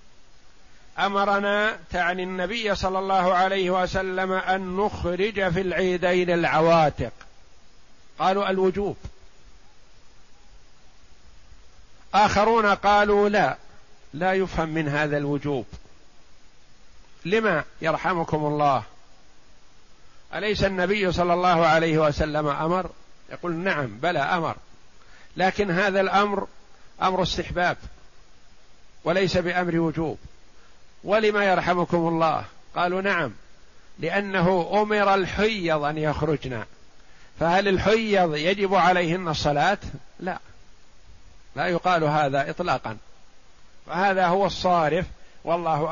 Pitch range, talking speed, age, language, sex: 155-190 Hz, 90 wpm, 50-69, Arabic, male